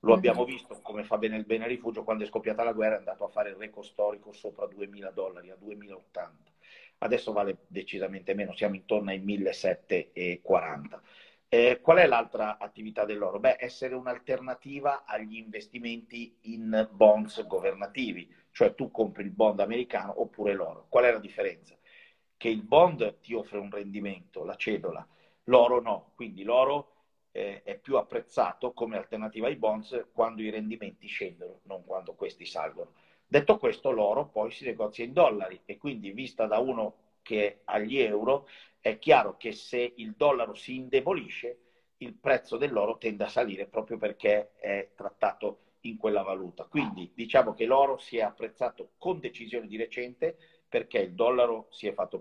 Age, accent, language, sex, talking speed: 40-59, native, Italian, male, 165 wpm